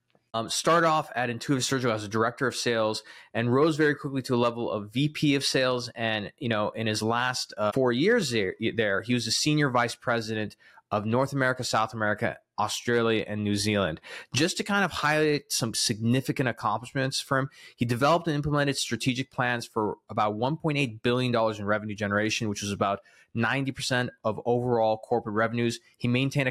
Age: 20-39